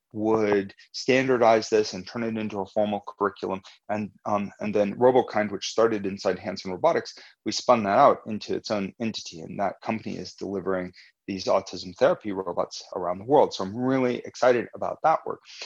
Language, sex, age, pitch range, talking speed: English, male, 30-49, 105-130 Hz, 180 wpm